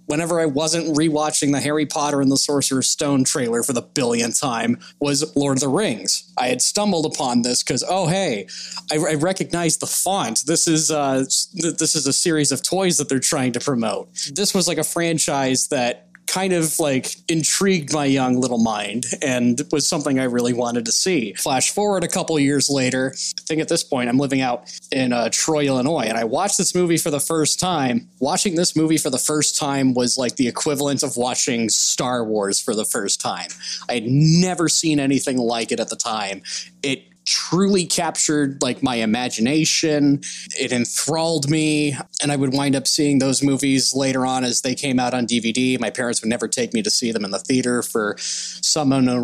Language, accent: English, American